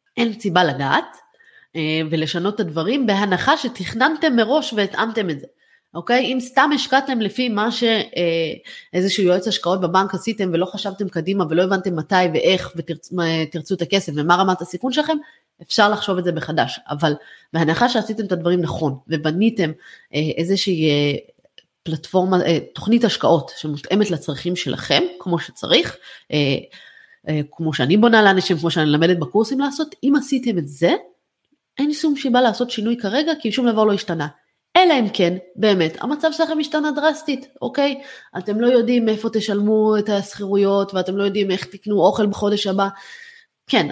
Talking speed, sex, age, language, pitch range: 150 wpm, female, 30-49, Hebrew, 170-235 Hz